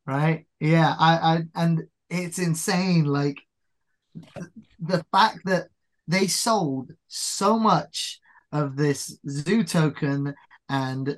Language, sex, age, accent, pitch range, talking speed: English, male, 20-39, British, 145-170 Hz, 115 wpm